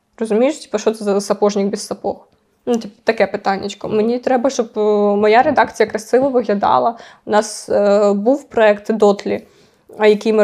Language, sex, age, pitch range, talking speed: Ukrainian, female, 20-39, 210-245 Hz, 145 wpm